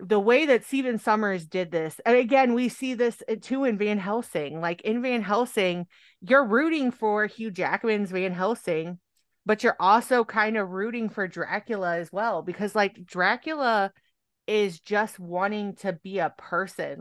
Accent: American